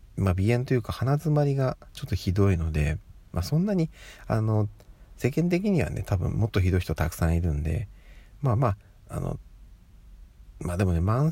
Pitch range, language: 90-110 Hz, Japanese